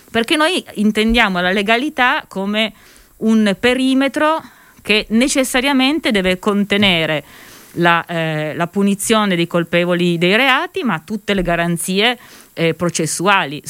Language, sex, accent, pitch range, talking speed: Italian, female, native, 170-230 Hz, 115 wpm